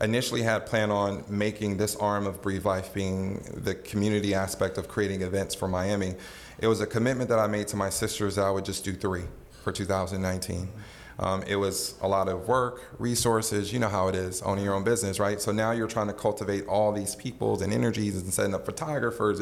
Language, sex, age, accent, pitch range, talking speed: English, male, 30-49, American, 95-110 Hz, 215 wpm